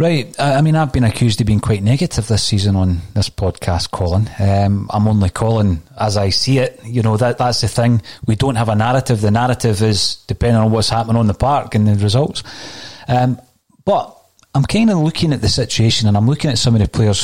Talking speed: 225 wpm